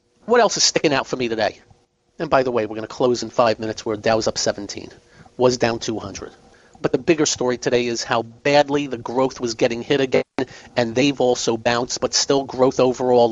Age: 40-59